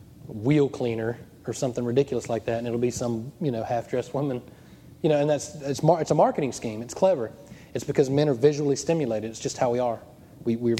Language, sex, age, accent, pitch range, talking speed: English, male, 30-49, American, 120-145 Hz, 220 wpm